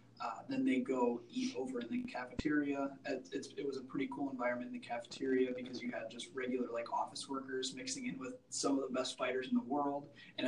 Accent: American